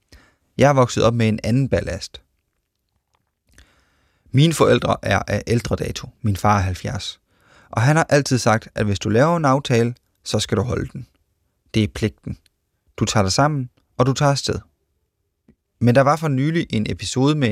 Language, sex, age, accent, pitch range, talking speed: Danish, male, 30-49, native, 95-125 Hz, 180 wpm